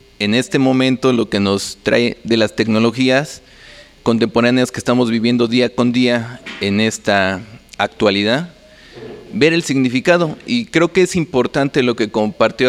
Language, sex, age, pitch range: Spanish, male, 30-49, 110-145 Hz